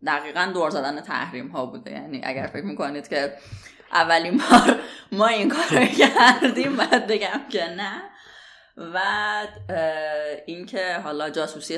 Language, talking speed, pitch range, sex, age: Persian, 125 wpm, 145-205 Hz, female, 20-39